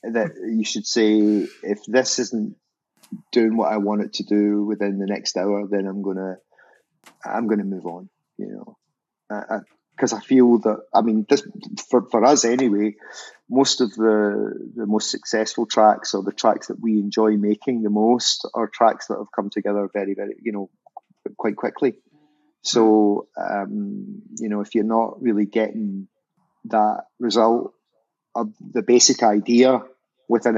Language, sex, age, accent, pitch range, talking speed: English, male, 30-49, British, 105-125 Hz, 170 wpm